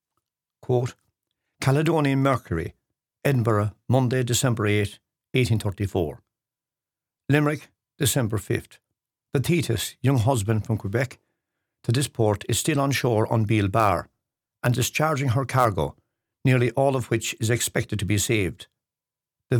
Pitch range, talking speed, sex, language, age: 105-130 Hz, 125 wpm, male, English, 60-79